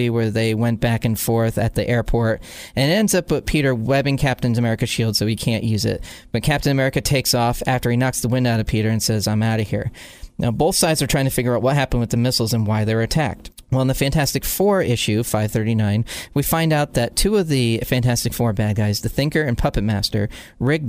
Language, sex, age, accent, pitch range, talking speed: English, male, 40-59, American, 115-145 Hz, 245 wpm